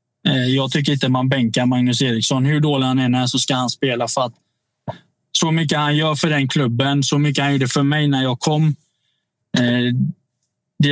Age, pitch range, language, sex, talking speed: 20-39, 125-150 Hz, Swedish, male, 200 wpm